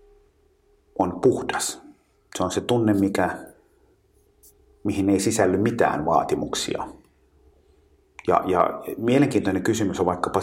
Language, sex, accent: Finnish, male, native